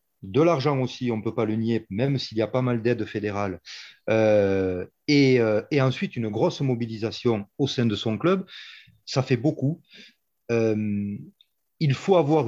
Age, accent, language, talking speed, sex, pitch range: 30-49, French, French, 170 wpm, male, 105-135 Hz